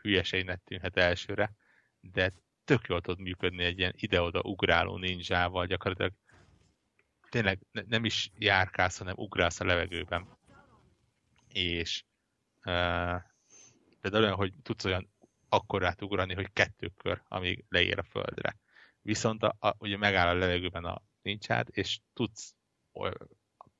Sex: male